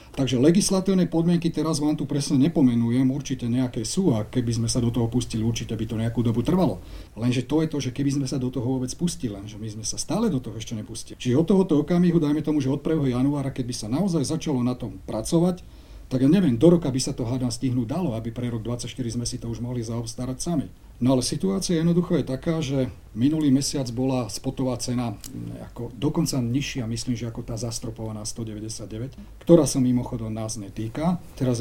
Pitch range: 115-150 Hz